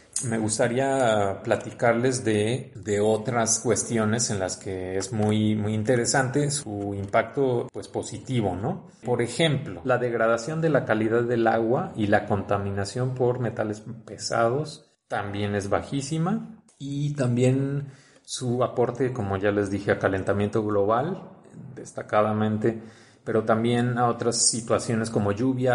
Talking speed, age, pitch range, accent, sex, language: 130 wpm, 30-49, 105-130 Hz, Mexican, male, Spanish